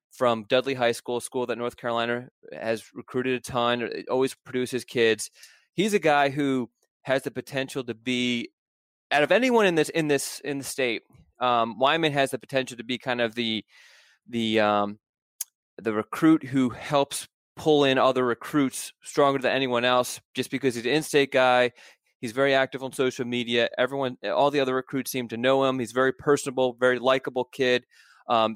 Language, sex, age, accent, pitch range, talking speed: English, male, 20-39, American, 120-135 Hz, 185 wpm